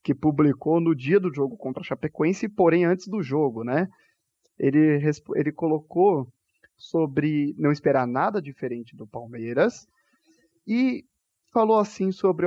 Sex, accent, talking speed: male, Brazilian, 135 wpm